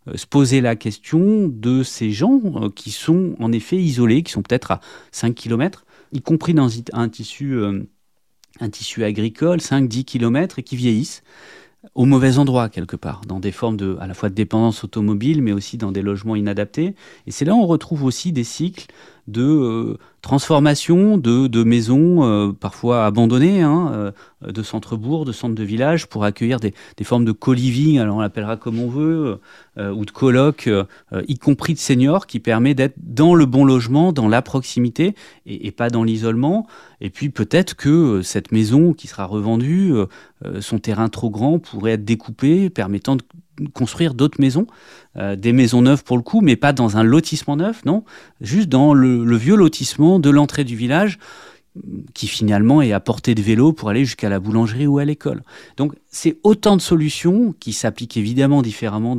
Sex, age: male, 30-49